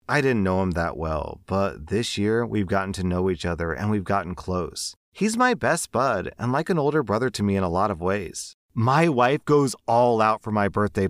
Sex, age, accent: male, 30-49, American